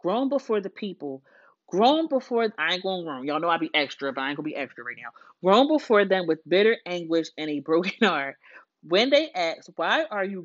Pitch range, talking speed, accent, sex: 160-215 Hz, 235 wpm, American, female